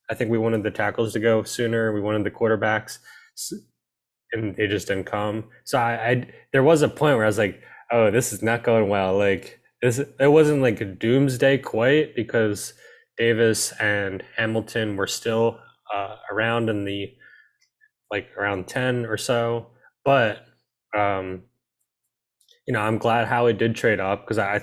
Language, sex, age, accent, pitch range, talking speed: English, male, 10-29, American, 105-125 Hz, 175 wpm